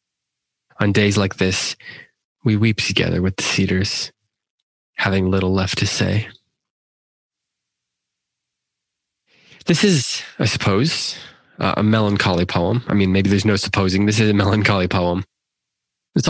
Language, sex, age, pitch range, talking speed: English, male, 20-39, 90-110 Hz, 130 wpm